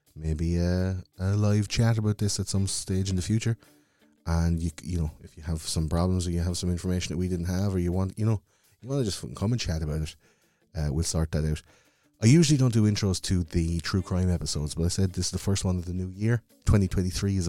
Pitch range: 80-95 Hz